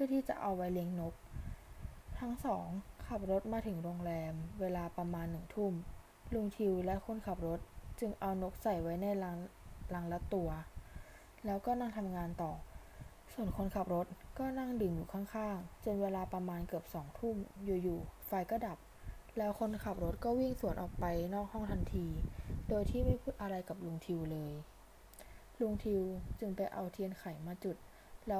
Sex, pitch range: female, 170-210 Hz